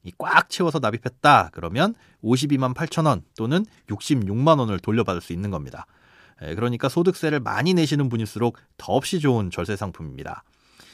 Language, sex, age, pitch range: Korean, male, 30-49, 110-170 Hz